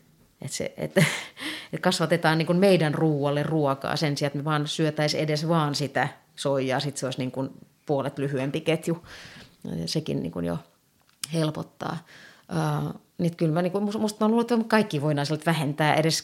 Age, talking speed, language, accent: 30-49, 155 wpm, Finnish, native